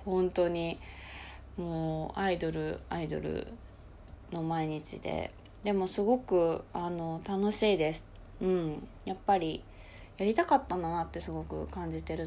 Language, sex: Japanese, female